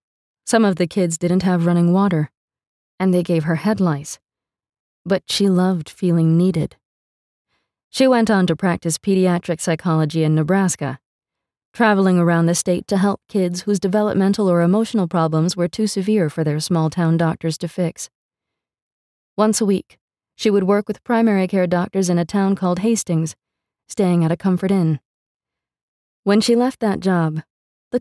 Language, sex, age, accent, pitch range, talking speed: English, female, 20-39, American, 165-200 Hz, 160 wpm